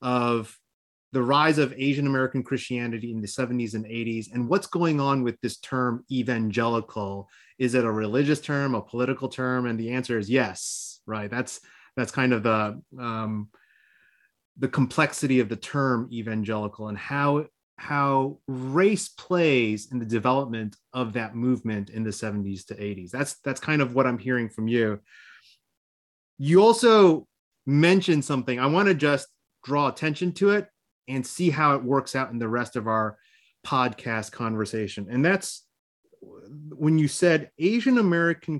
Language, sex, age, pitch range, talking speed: English, male, 30-49, 115-145 Hz, 160 wpm